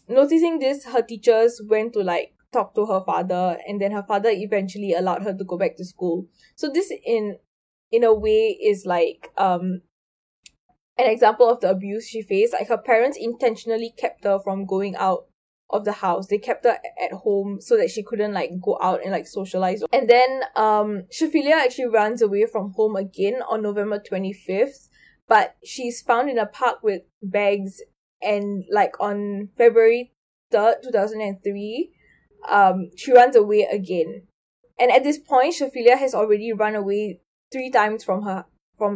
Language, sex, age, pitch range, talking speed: English, female, 10-29, 195-250 Hz, 175 wpm